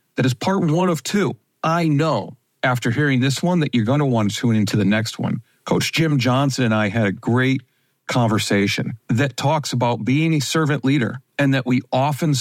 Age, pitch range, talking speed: 50-69, 115-145 Hz, 210 wpm